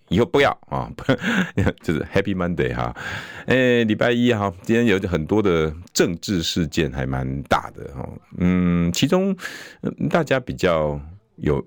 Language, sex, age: Chinese, male, 50-69